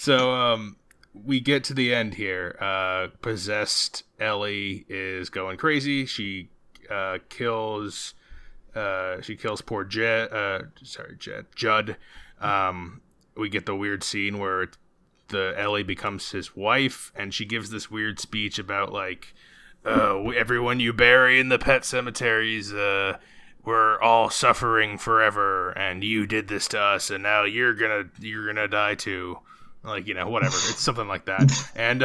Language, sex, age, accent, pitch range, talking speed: English, male, 20-39, American, 100-120 Hz, 155 wpm